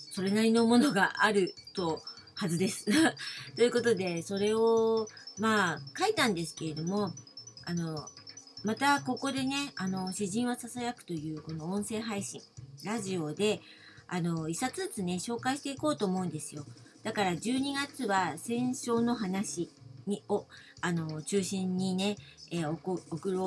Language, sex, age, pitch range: Japanese, female, 40-59, 155-220 Hz